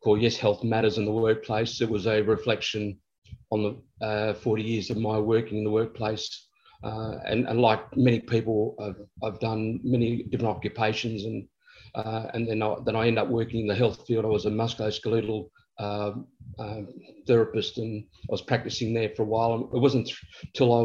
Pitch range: 110-120 Hz